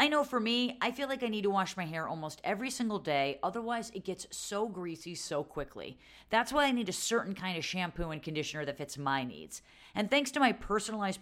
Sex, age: female, 40-59